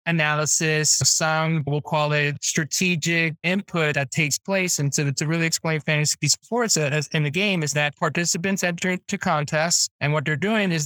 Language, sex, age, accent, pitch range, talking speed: English, male, 20-39, American, 145-165 Hz, 170 wpm